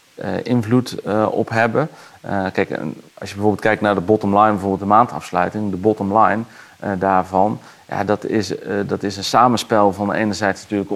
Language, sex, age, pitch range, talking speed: Dutch, male, 40-59, 95-110 Hz, 175 wpm